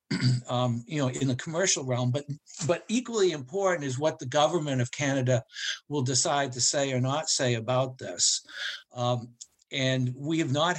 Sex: male